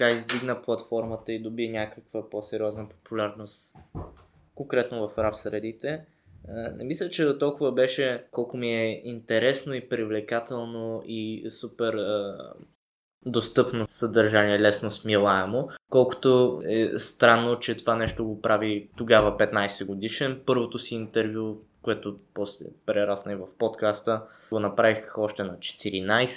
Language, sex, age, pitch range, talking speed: Bulgarian, male, 20-39, 105-120 Hz, 125 wpm